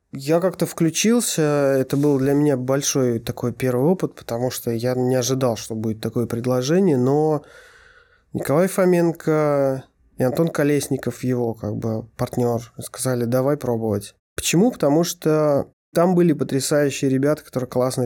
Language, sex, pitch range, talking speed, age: Russian, male, 120-155 Hz, 140 wpm, 20-39